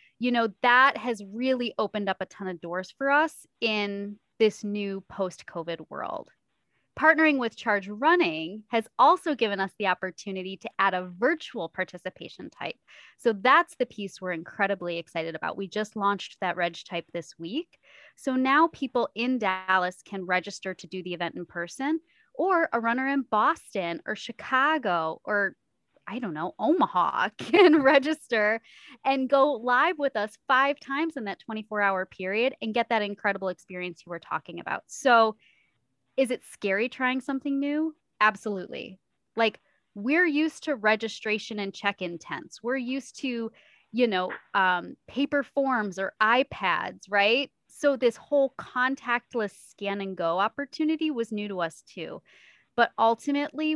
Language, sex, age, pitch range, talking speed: English, female, 20-39, 195-270 Hz, 155 wpm